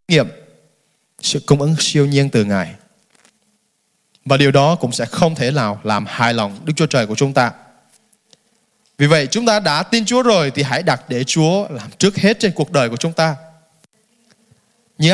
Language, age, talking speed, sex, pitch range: Vietnamese, 20-39, 190 wpm, male, 175-260 Hz